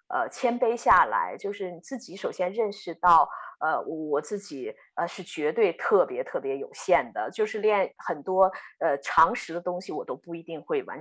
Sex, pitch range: female, 170-240 Hz